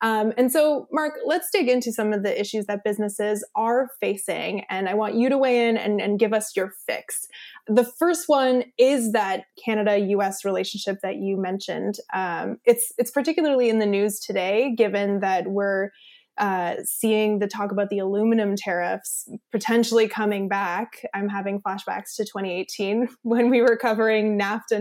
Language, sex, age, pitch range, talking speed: English, female, 20-39, 200-250 Hz, 170 wpm